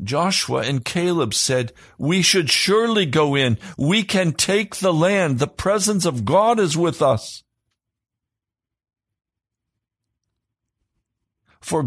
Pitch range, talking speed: 115-180 Hz, 110 wpm